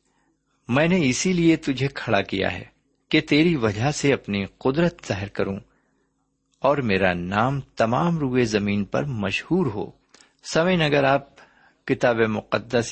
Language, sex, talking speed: Urdu, male, 140 wpm